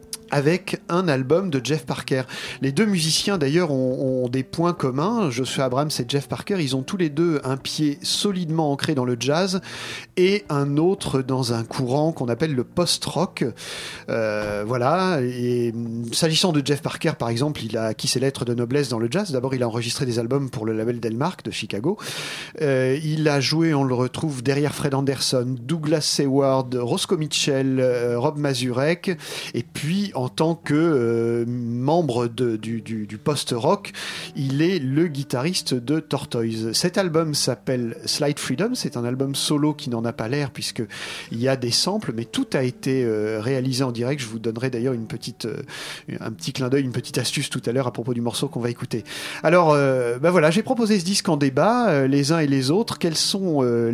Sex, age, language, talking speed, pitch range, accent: male, 40-59, French, 200 wpm, 125-160 Hz, French